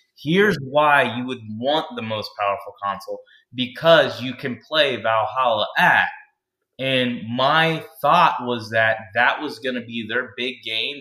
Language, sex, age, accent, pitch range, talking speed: English, male, 20-39, American, 110-130 Hz, 155 wpm